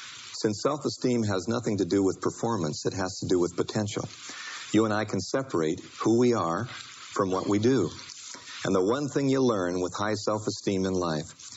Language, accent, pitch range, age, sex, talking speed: English, American, 95-120 Hz, 50-69, male, 190 wpm